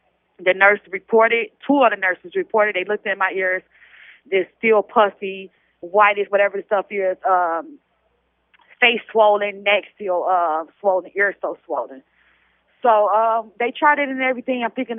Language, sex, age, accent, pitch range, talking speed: English, female, 20-39, American, 205-245 Hz, 160 wpm